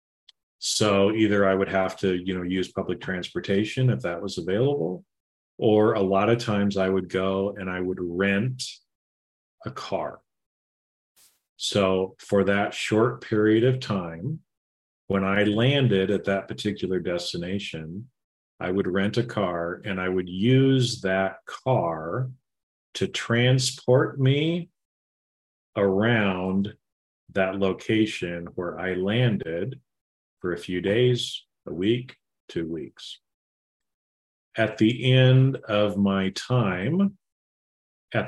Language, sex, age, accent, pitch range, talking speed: English, male, 40-59, American, 90-110 Hz, 120 wpm